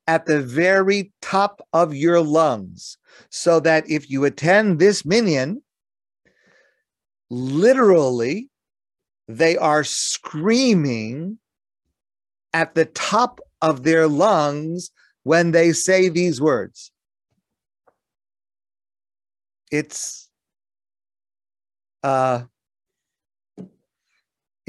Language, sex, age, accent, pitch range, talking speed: English, male, 50-69, American, 125-175 Hz, 75 wpm